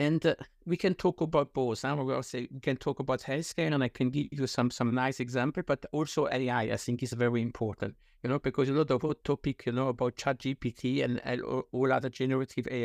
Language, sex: English, male